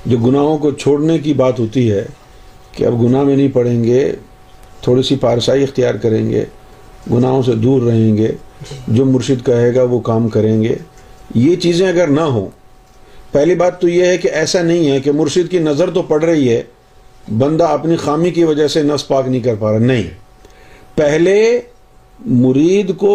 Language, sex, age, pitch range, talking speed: Urdu, male, 50-69, 125-170 Hz, 185 wpm